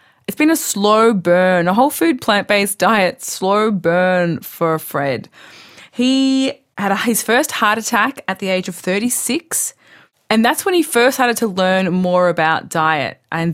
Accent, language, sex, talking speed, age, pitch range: Australian, English, female, 165 wpm, 20-39, 175-230 Hz